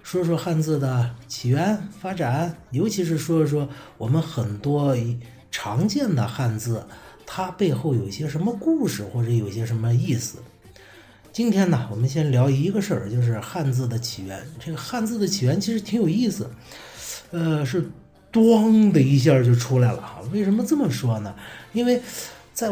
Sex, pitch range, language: male, 120-170 Hz, Chinese